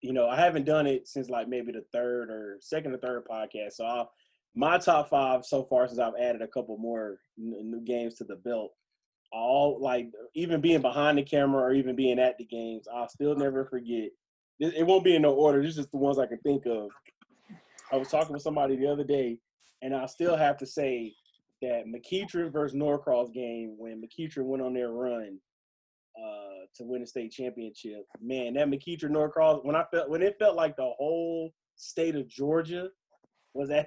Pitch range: 120-150 Hz